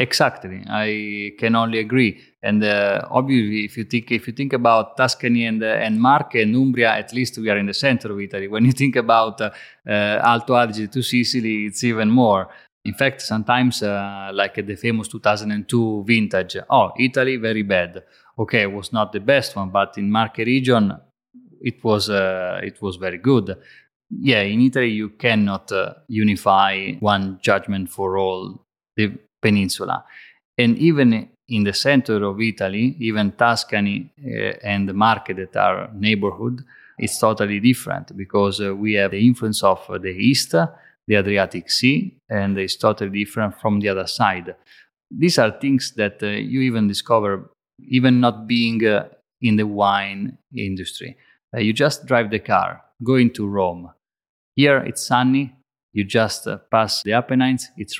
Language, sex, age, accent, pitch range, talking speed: English, male, 20-39, Italian, 100-125 Hz, 175 wpm